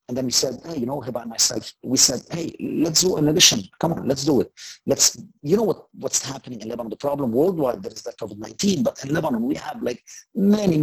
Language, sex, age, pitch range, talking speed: English, male, 50-69, 120-155 Hz, 240 wpm